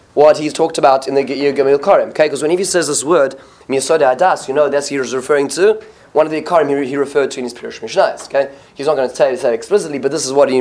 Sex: male